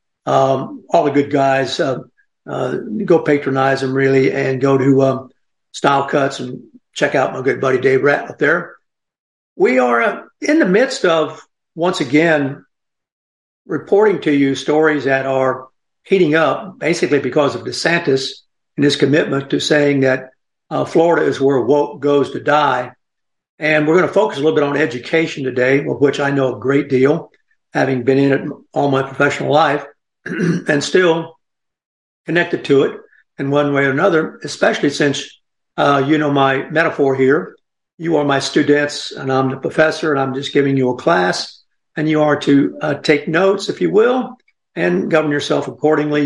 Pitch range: 135-160 Hz